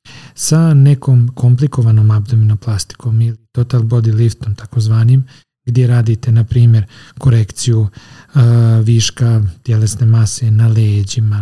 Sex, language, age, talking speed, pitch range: male, English, 40-59, 105 wpm, 115-130 Hz